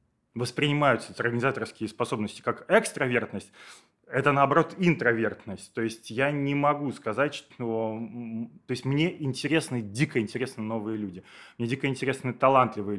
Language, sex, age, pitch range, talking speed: Russian, male, 20-39, 115-150 Hz, 125 wpm